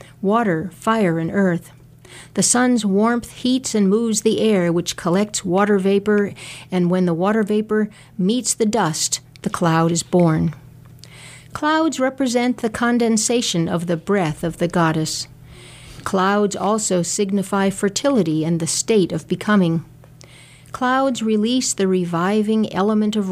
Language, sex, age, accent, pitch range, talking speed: English, female, 50-69, American, 160-220 Hz, 135 wpm